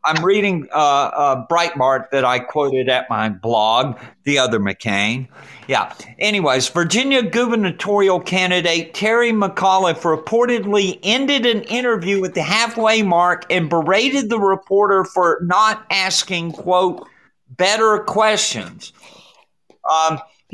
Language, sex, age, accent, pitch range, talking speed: English, male, 50-69, American, 145-210 Hz, 115 wpm